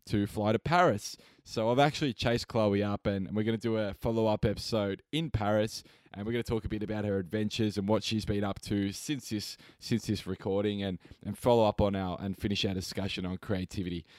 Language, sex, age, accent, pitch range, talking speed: English, male, 20-39, Australian, 100-120 Hz, 225 wpm